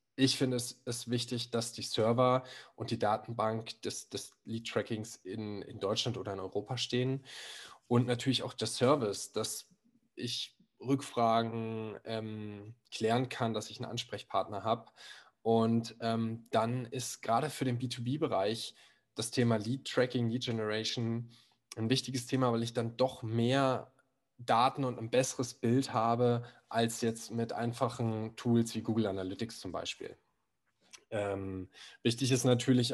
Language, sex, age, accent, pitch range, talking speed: German, male, 10-29, German, 110-125 Hz, 140 wpm